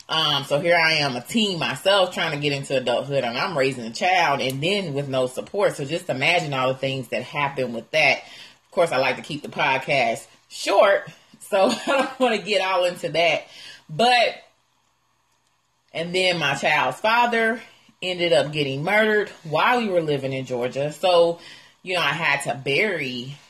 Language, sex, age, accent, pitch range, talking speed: English, female, 30-49, American, 130-175 Hz, 190 wpm